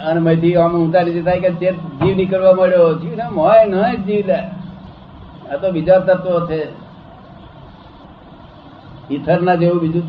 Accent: native